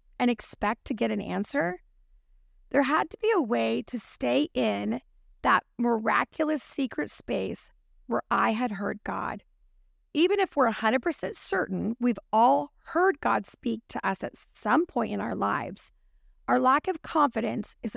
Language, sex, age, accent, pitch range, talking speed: English, female, 40-59, American, 210-280 Hz, 155 wpm